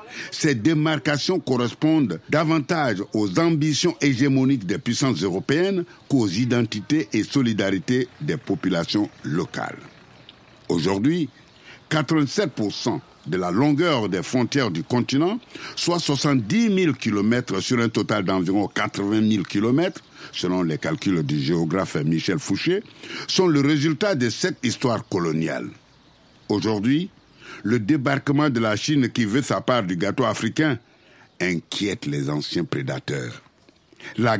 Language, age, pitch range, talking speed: French, 60-79, 105-155 Hz, 120 wpm